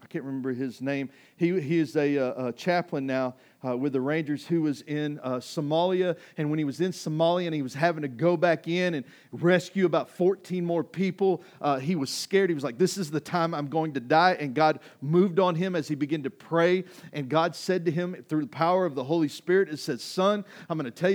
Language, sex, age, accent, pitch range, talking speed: English, male, 40-59, American, 130-175 Hz, 245 wpm